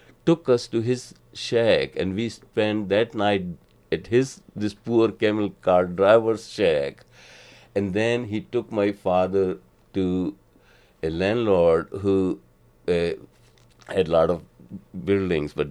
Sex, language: male, English